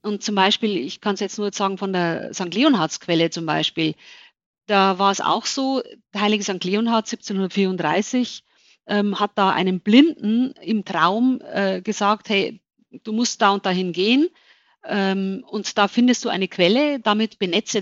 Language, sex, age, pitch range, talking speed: German, female, 50-69, 195-245 Hz, 170 wpm